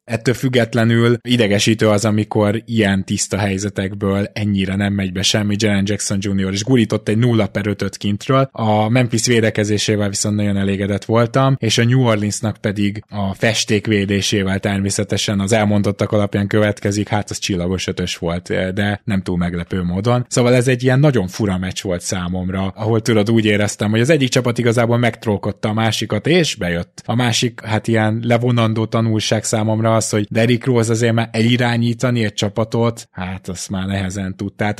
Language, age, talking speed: Hungarian, 20-39, 165 wpm